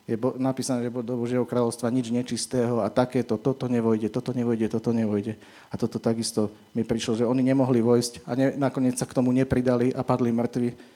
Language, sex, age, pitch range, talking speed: Slovak, male, 40-59, 110-125 Hz, 190 wpm